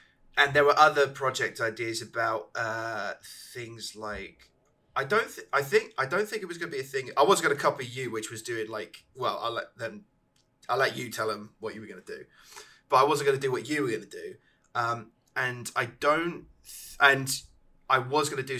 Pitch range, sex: 115-135 Hz, male